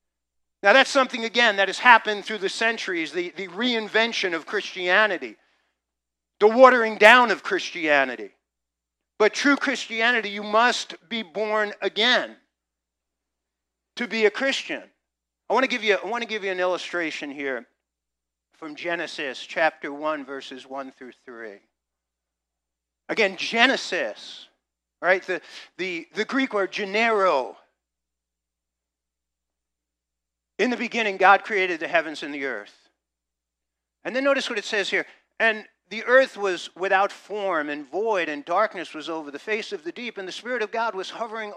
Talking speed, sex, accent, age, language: 145 wpm, male, American, 50-69, English